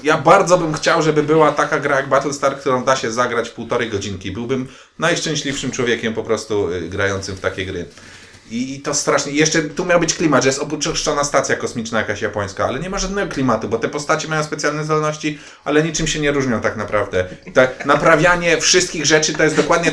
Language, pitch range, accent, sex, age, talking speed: Polish, 125-155 Hz, native, male, 30-49, 200 wpm